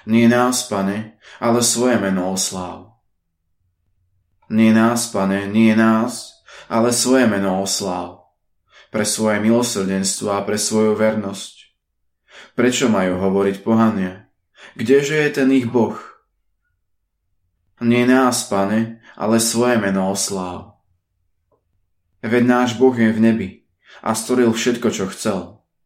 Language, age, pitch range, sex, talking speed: Slovak, 20-39, 90-115 Hz, male, 115 wpm